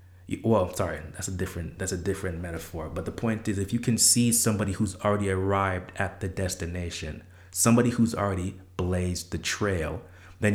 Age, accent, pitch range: 30-49, American, 90-115 Hz